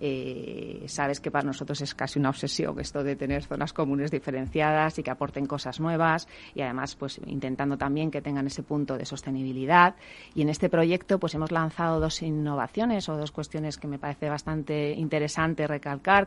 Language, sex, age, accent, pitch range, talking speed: Spanish, female, 30-49, Spanish, 140-165 Hz, 180 wpm